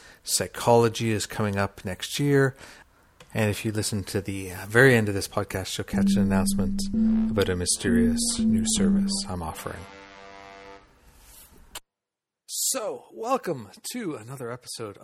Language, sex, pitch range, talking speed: English, male, 110-135 Hz, 130 wpm